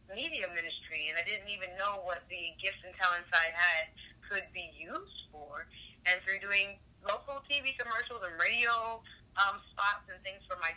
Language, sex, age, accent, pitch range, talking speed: English, female, 20-39, American, 180-220 Hz, 180 wpm